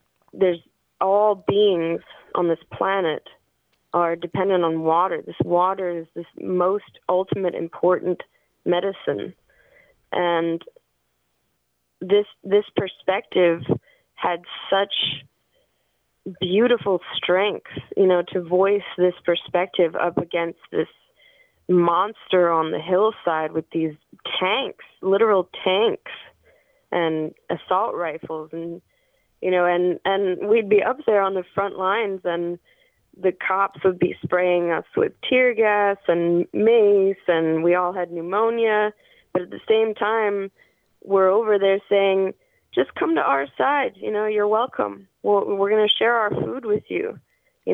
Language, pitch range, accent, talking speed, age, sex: English, 170-205 Hz, American, 130 wpm, 20-39, female